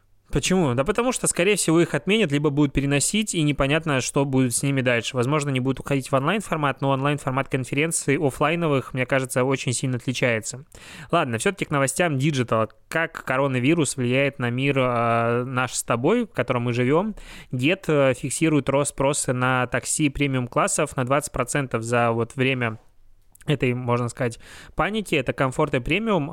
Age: 20-39